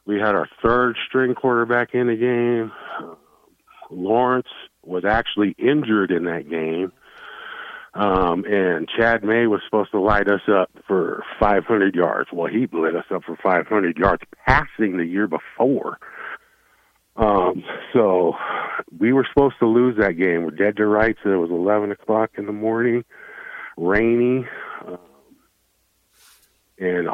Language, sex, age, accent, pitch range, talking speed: English, male, 50-69, American, 105-120 Hz, 135 wpm